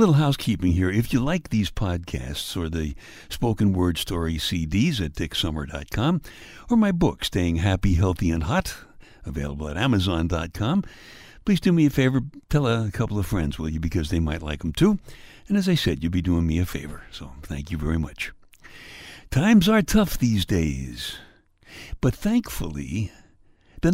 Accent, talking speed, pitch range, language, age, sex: American, 170 wpm, 85-135 Hz, English, 60-79, male